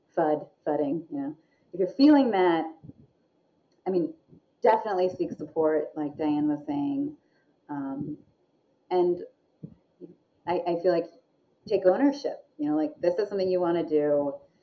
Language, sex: English, female